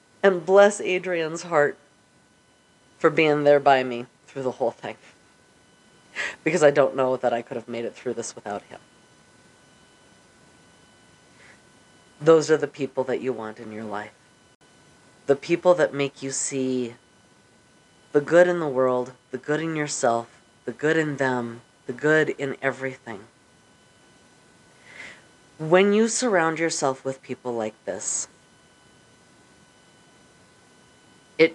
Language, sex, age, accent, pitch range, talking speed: English, female, 30-49, American, 130-185 Hz, 130 wpm